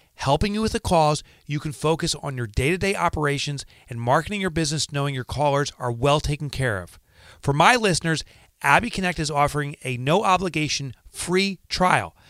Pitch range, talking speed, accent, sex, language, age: 120-180 Hz, 185 wpm, American, male, English, 30-49